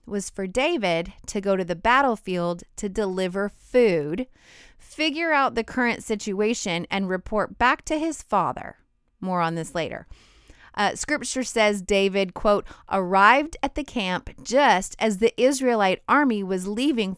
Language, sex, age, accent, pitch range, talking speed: English, female, 30-49, American, 175-220 Hz, 145 wpm